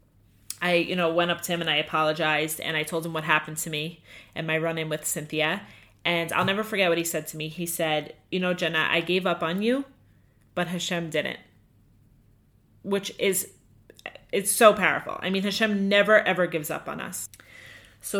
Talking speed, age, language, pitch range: 200 wpm, 30-49, English, 165-205 Hz